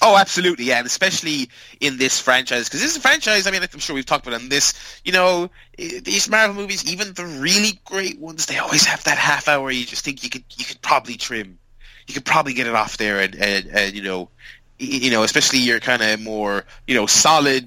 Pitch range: 110-145 Hz